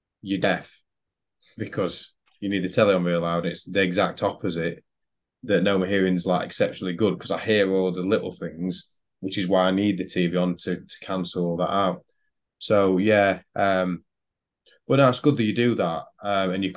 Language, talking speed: English, 205 wpm